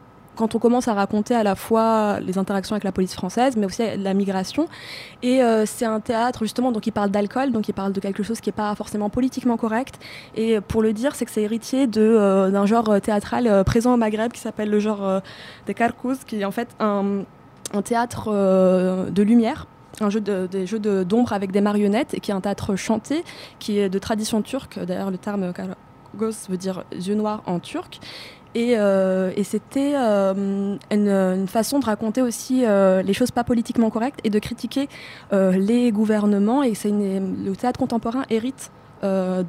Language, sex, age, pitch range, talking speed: French, female, 20-39, 195-230 Hz, 205 wpm